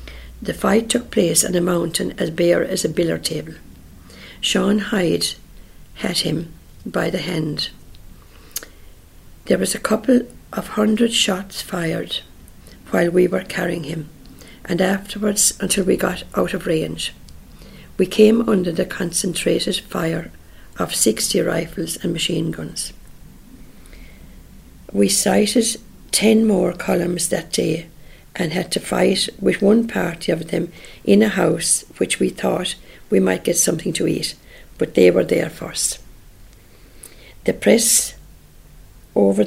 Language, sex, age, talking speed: English, female, 60-79, 135 wpm